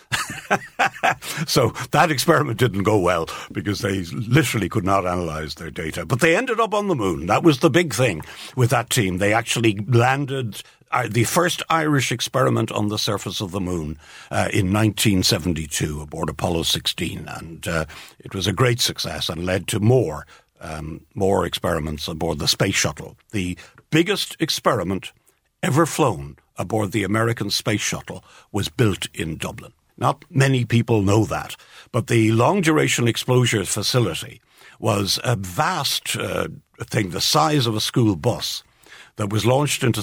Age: 60-79